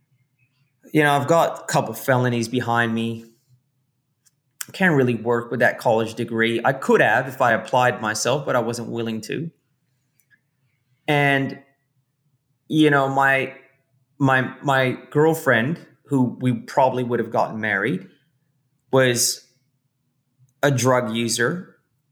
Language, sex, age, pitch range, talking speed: English, male, 30-49, 125-145 Hz, 130 wpm